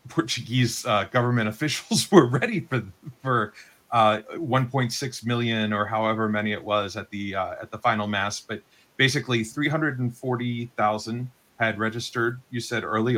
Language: English